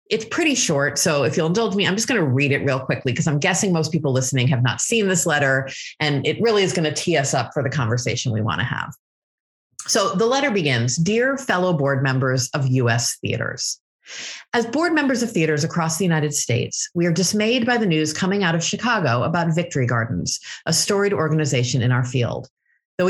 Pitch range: 130-185 Hz